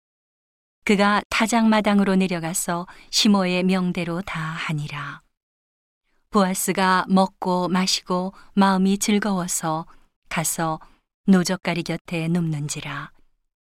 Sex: female